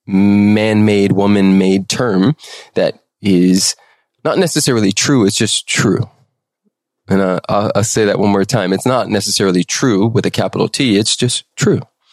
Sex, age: male, 20-39